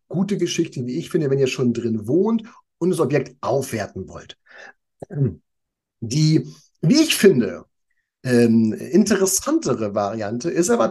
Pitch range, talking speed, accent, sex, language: 125-190 Hz, 125 wpm, German, male, German